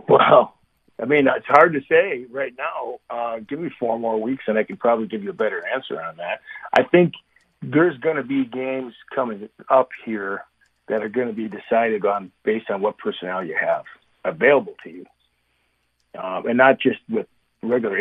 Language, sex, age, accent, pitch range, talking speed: English, male, 50-69, American, 110-140 Hz, 195 wpm